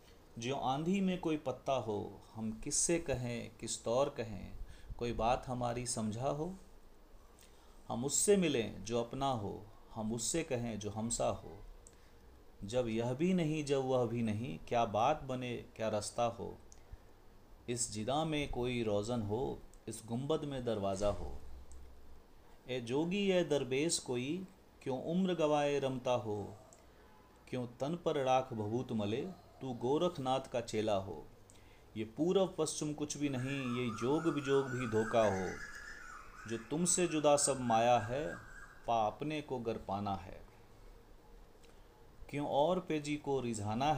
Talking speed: 140 wpm